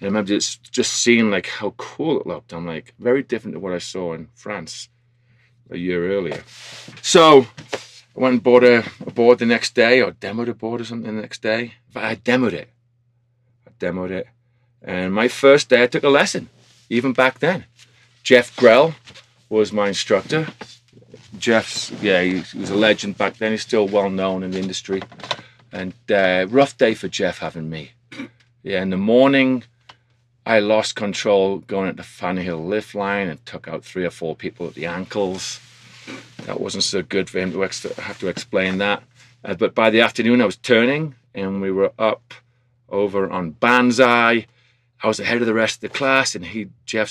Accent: British